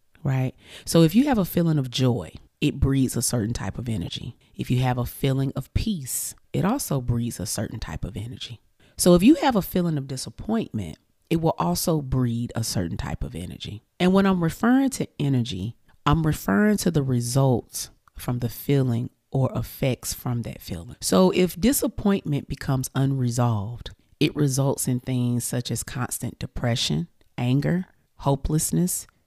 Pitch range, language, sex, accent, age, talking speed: 115-160 Hz, English, female, American, 30-49, 170 wpm